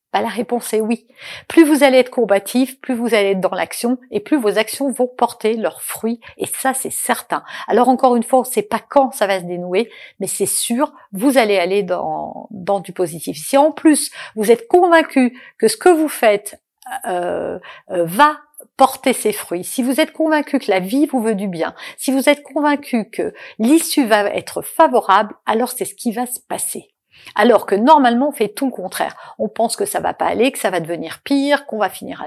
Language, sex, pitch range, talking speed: French, female, 200-275 Hz, 220 wpm